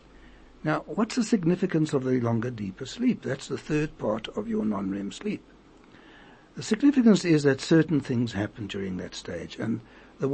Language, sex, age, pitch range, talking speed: English, male, 60-79, 120-175 Hz, 170 wpm